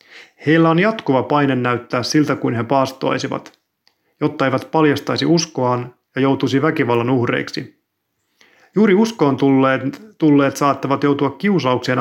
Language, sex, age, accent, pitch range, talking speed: Finnish, male, 30-49, native, 130-160 Hz, 120 wpm